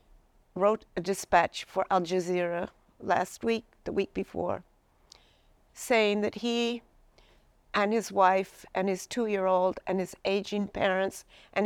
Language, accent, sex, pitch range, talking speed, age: English, American, female, 190-220 Hz, 130 wpm, 50-69